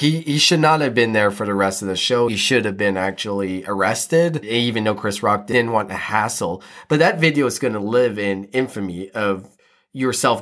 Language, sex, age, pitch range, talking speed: English, male, 30-49, 105-155 Hz, 220 wpm